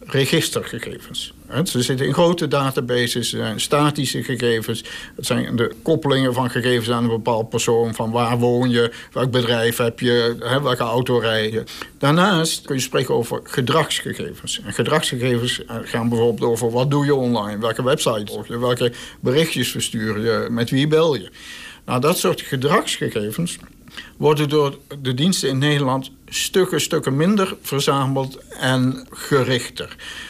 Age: 60-79